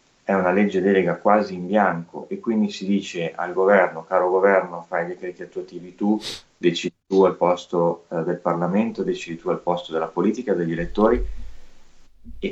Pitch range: 85-100 Hz